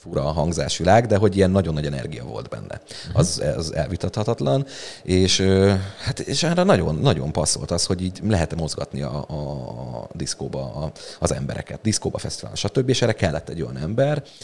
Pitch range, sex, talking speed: 80-105 Hz, male, 170 wpm